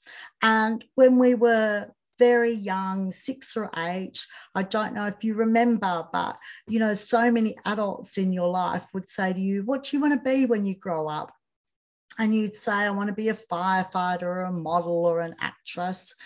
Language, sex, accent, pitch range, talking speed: English, female, Australian, 185-240 Hz, 195 wpm